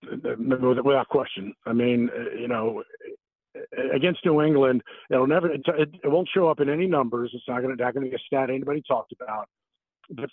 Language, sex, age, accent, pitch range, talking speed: English, male, 50-69, American, 130-180 Hz, 170 wpm